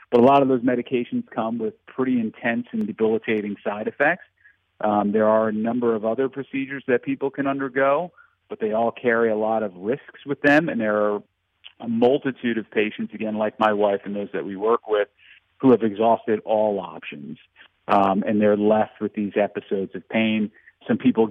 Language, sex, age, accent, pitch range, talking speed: English, male, 40-59, American, 110-130 Hz, 195 wpm